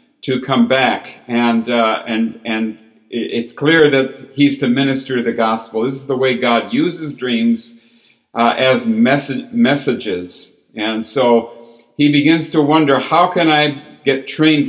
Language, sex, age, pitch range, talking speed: English, male, 60-79, 120-155 Hz, 150 wpm